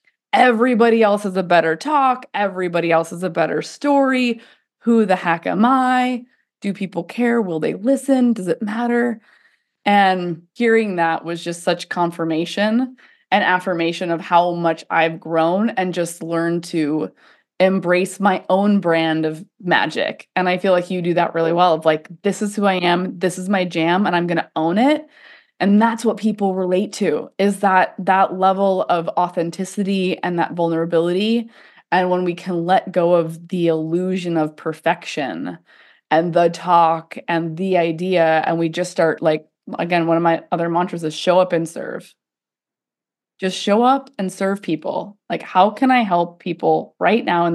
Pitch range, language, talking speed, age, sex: 170-210 Hz, English, 175 wpm, 20-39, female